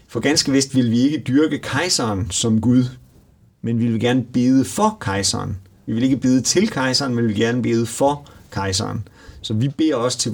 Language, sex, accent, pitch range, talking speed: Danish, male, native, 105-130 Hz, 205 wpm